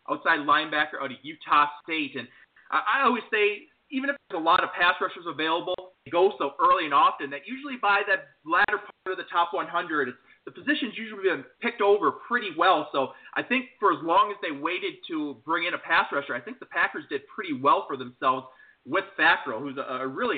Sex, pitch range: male, 155-220 Hz